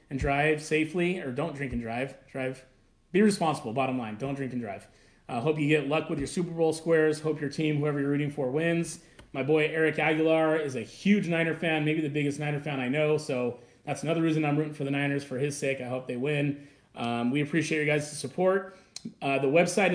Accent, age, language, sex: American, 30-49, English, male